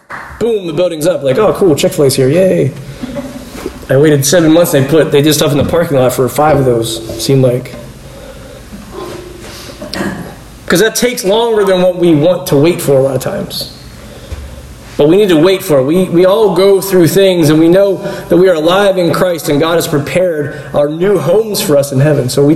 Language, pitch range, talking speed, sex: English, 135-170 Hz, 210 wpm, male